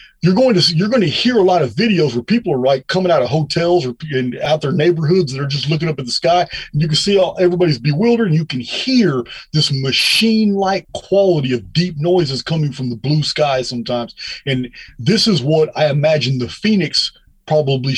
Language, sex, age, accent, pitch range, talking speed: English, male, 30-49, American, 130-175 Hz, 215 wpm